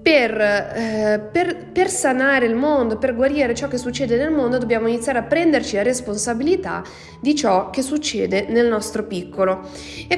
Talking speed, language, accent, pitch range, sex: 165 wpm, Italian, native, 200-275 Hz, female